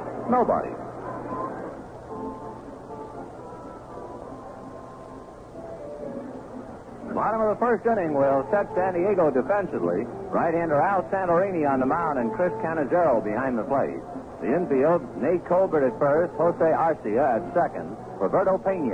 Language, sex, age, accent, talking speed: English, male, 60-79, American, 115 wpm